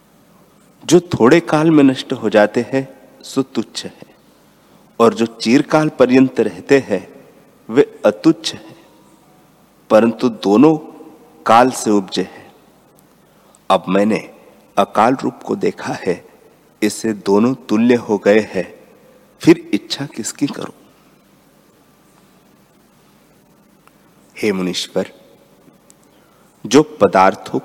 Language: Hindi